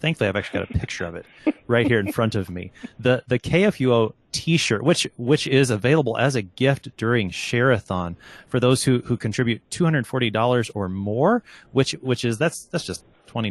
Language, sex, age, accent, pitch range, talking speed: English, male, 30-49, American, 105-135 Hz, 185 wpm